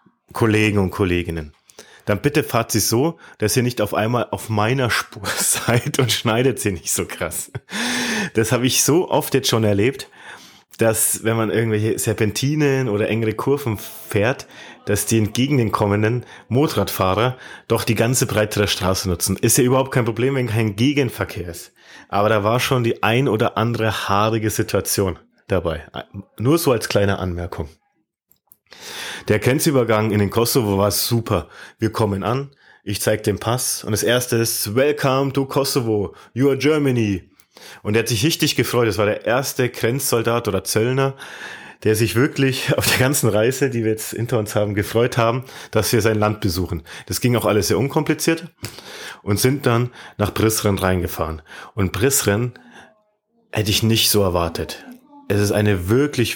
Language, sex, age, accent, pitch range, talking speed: German, male, 30-49, German, 105-130 Hz, 170 wpm